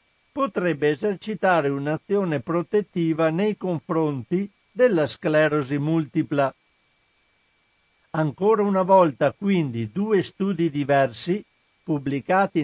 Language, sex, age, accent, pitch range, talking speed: Italian, male, 60-79, native, 145-195 Hz, 80 wpm